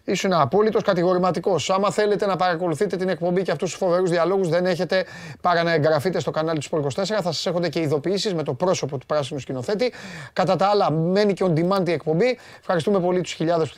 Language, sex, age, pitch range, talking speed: Greek, male, 30-49, 150-200 Hz, 220 wpm